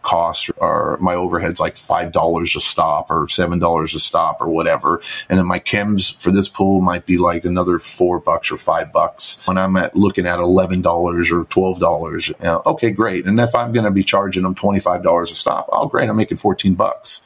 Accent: American